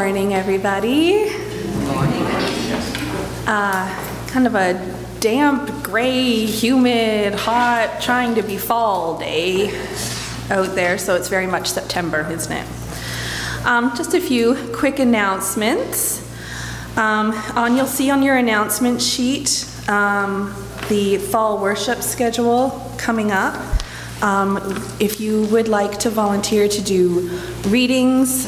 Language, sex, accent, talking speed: English, female, American, 115 wpm